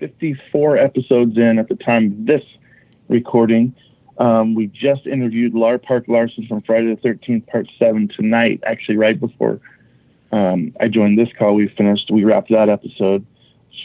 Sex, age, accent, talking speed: male, 40-59, American, 165 wpm